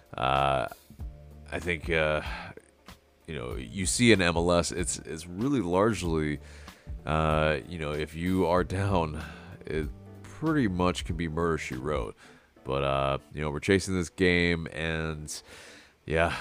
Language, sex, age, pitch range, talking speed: English, male, 30-49, 70-85 Hz, 145 wpm